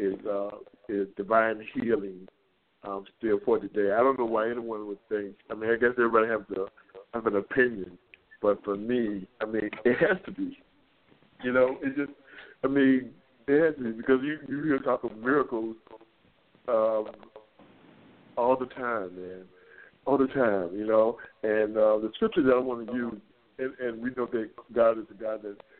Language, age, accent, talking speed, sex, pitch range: English, 60-79, American, 185 wpm, male, 105-130 Hz